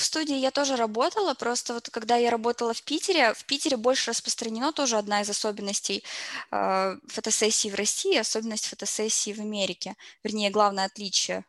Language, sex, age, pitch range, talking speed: Russian, female, 20-39, 210-265 Hz, 155 wpm